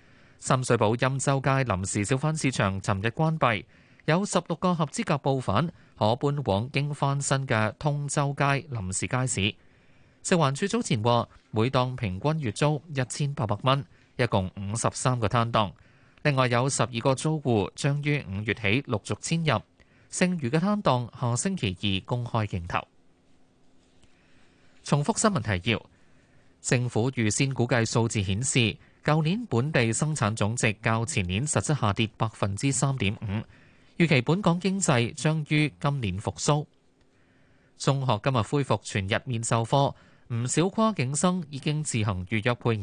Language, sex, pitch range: Chinese, male, 105-145 Hz